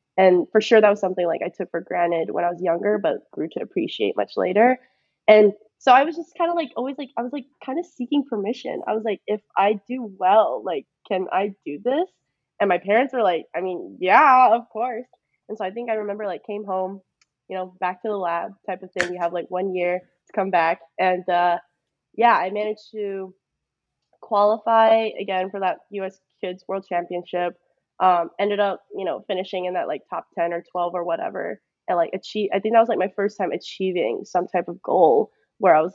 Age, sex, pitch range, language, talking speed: 20-39, female, 180-215 Hz, English, 225 wpm